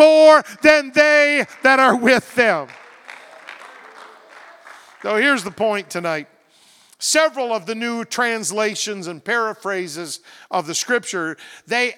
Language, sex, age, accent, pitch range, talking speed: English, male, 50-69, American, 210-290 Hz, 115 wpm